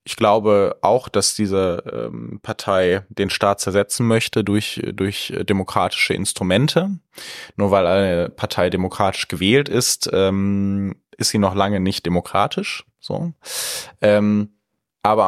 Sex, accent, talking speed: male, German, 125 wpm